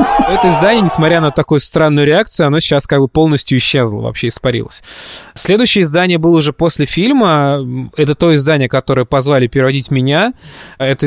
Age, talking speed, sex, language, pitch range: 20-39, 155 wpm, male, Russian, 130-165 Hz